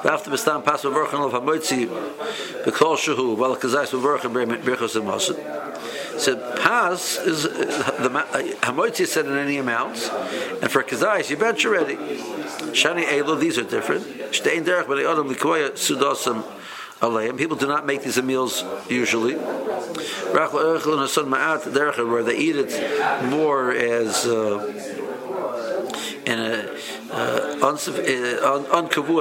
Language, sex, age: English, male, 60-79